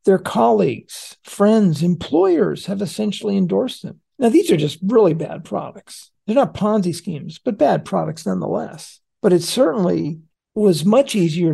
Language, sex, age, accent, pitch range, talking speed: English, male, 50-69, American, 170-215 Hz, 150 wpm